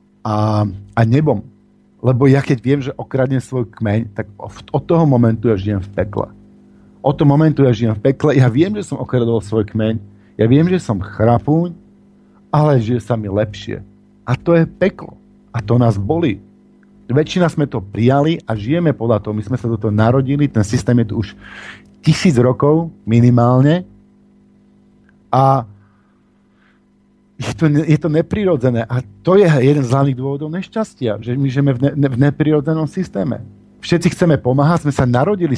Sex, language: male, Slovak